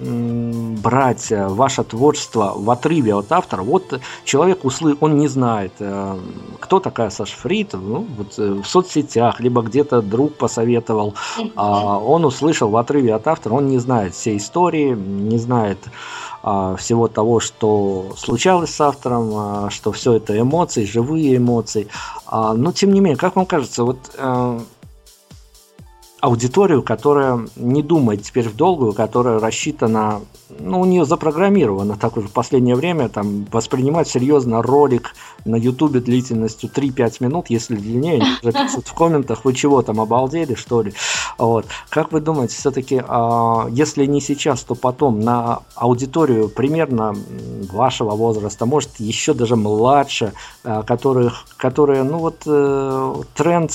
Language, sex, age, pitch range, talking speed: Russian, male, 50-69, 110-145 Hz, 130 wpm